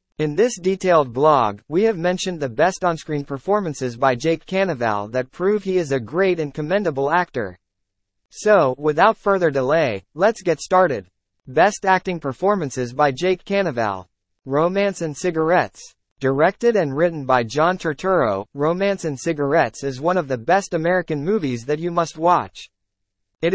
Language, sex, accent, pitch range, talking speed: English, male, American, 130-185 Hz, 155 wpm